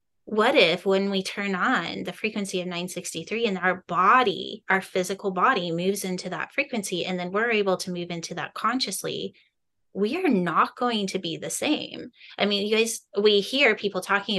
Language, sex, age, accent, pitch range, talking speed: English, female, 20-39, American, 175-205 Hz, 190 wpm